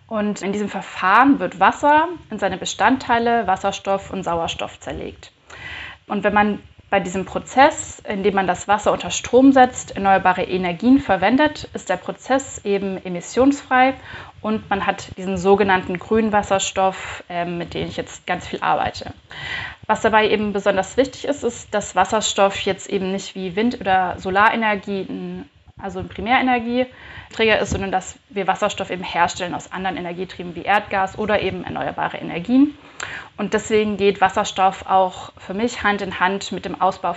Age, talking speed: 30-49, 155 wpm